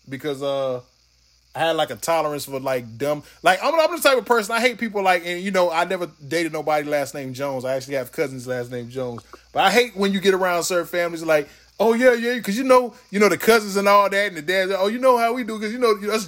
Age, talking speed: 20-39, 275 wpm